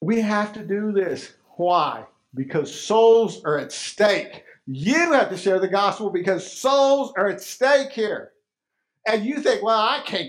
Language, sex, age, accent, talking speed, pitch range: English, male, 50-69, American, 170 wpm, 155-220 Hz